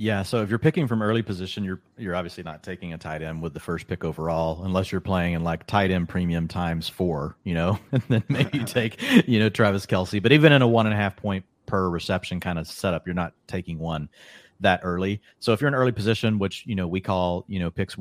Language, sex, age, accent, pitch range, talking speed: English, male, 30-49, American, 90-110 Hz, 240 wpm